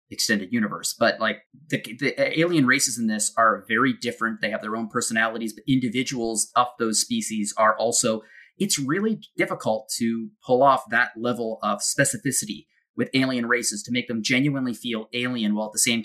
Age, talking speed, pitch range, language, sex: 20-39, 180 wpm, 110-135 Hz, English, male